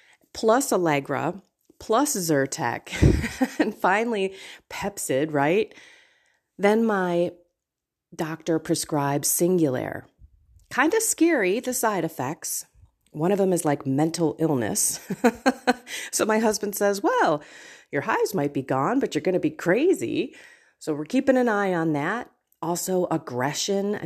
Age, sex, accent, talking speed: 30-49, female, American, 130 wpm